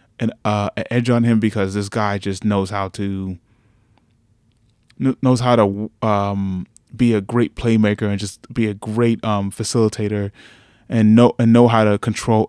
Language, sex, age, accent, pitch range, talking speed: English, male, 20-39, American, 100-115 Hz, 160 wpm